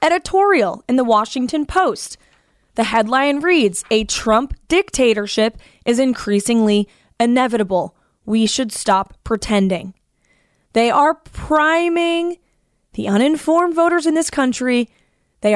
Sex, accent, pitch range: female, American, 215-305 Hz